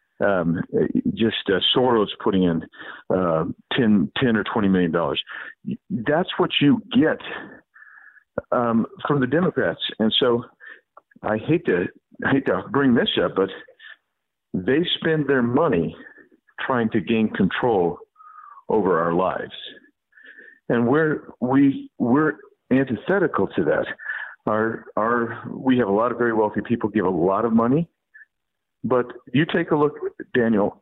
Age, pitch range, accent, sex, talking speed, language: 50-69, 110-160 Hz, American, male, 140 wpm, English